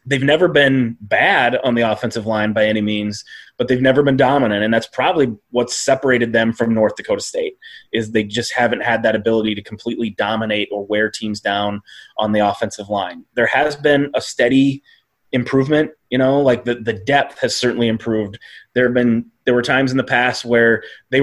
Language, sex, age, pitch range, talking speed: English, male, 20-39, 115-130 Hz, 200 wpm